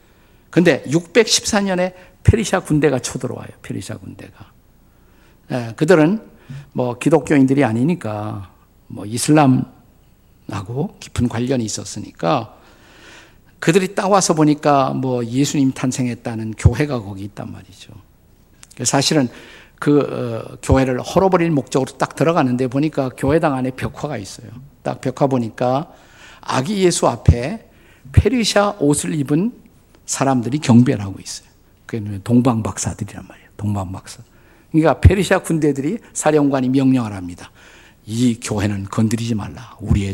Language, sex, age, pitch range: Korean, male, 50-69, 110-150 Hz